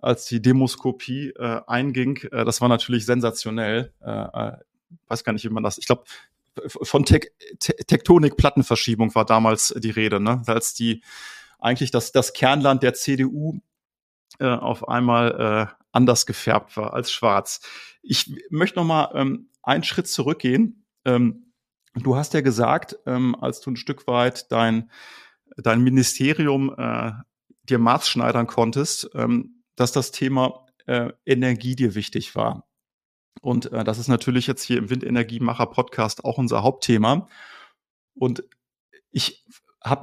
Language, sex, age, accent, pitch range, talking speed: German, male, 30-49, German, 120-155 Hz, 150 wpm